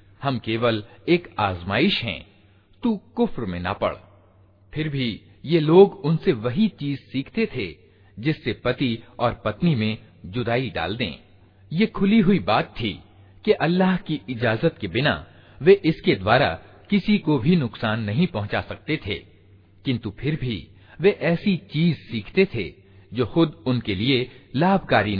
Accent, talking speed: native, 150 wpm